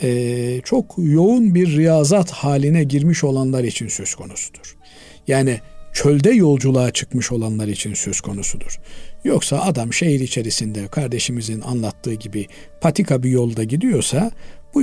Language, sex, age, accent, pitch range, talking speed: Turkish, male, 50-69, native, 120-165 Hz, 125 wpm